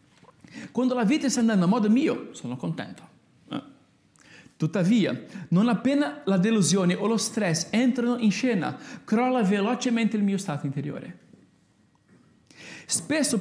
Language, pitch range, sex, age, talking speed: Italian, 195-250 Hz, male, 50-69, 125 wpm